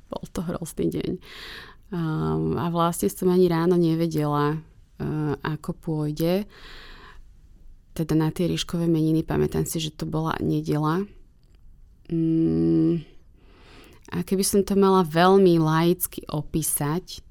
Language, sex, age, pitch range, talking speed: Slovak, female, 20-39, 150-175 Hz, 105 wpm